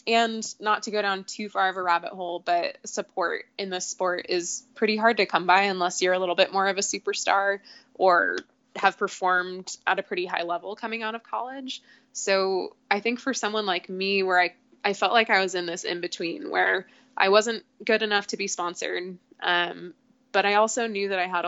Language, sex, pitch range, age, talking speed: English, female, 180-230 Hz, 20-39, 215 wpm